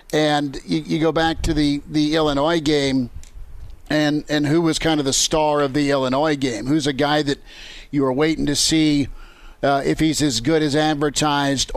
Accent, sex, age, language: American, male, 50-69, English